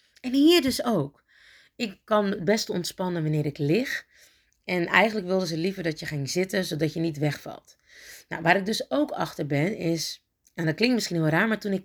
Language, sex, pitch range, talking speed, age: Dutch, female, 155-215 Hz, 215 wpm, 30-49